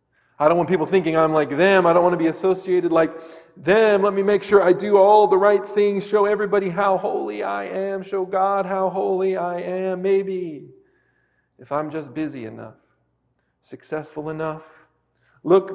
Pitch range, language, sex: 130-190 Hz, English, male